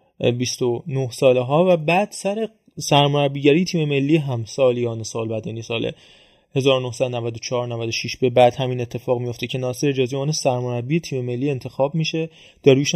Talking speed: 150 wpm